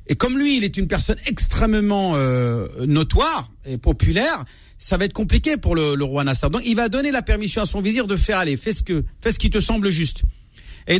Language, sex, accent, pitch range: French, male, French, 135-195 Hz